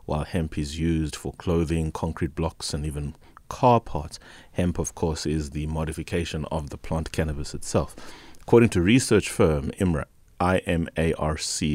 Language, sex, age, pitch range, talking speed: English, male, 30-49, 75-90 Hz, 150 wpm